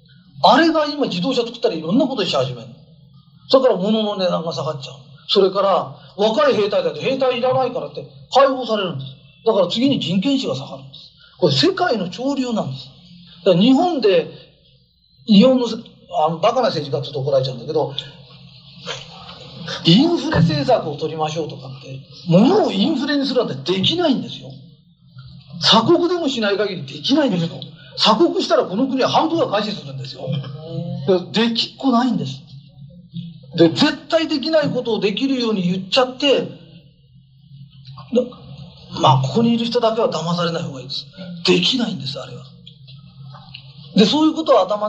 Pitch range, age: 145-235 Hz, 40-59